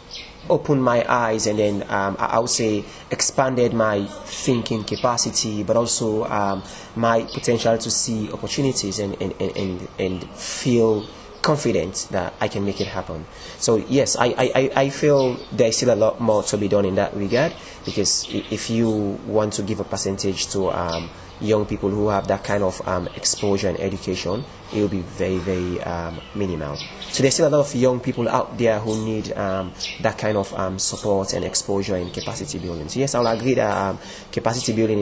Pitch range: 95-115 Hz